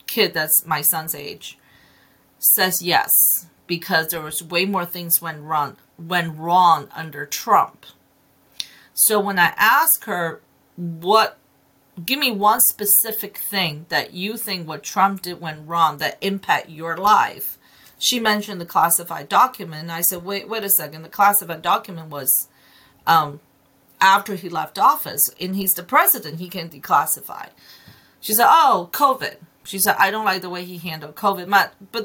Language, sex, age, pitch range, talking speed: English, female, 40-59, 165-205 Hz, 160 wpm